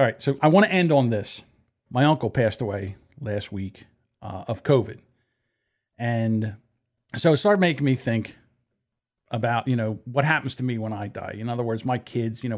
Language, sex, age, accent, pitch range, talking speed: English, male, 50-69, American, 115-150 Hz, 200 wpm